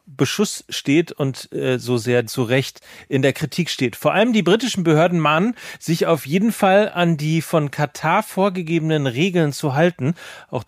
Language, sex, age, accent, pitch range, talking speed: German, male, 40-59, German, 135-180 Hz, 175 wpm